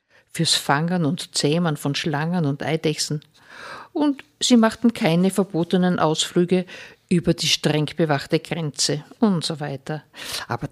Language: German